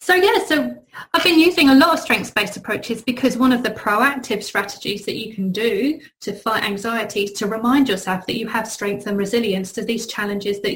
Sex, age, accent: female, 30-49, British